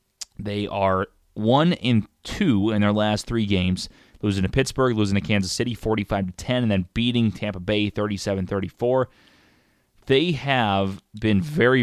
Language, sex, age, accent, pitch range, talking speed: English, male, 20-39, American, 100-125 Hz, 130 wpm